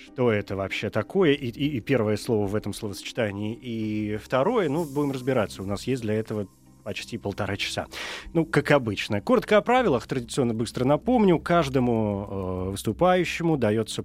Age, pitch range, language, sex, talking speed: 20-39, 105-145 Hz, Russian, male, 160 wpm